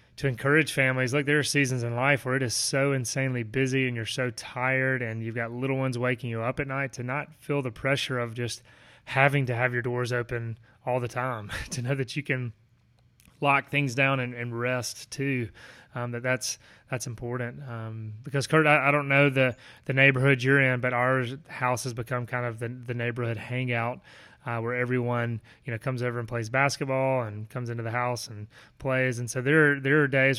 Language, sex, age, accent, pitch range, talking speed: English, male, 30-49, American, 120-135 Hz, 215 wpm